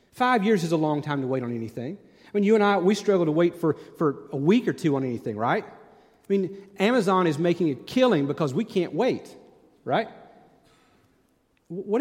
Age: 40-59